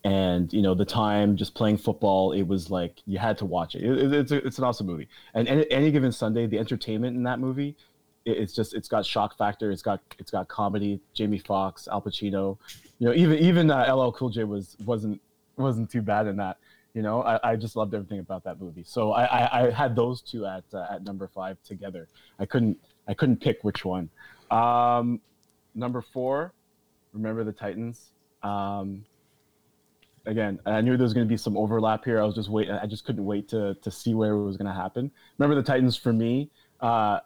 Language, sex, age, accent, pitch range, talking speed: English, male, 20-39, American, 105-125 Hz, 220 wpm